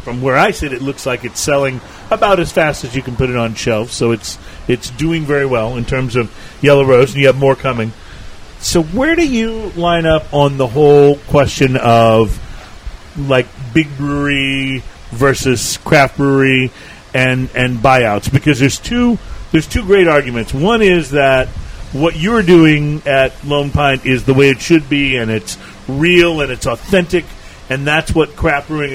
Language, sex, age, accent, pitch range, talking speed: English, male, 40-59, American, 130-170 Hz, 180 wpm